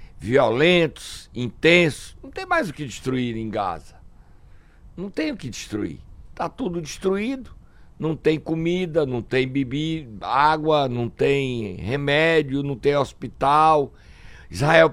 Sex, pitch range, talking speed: male, 105-155 Hz, 130 wpm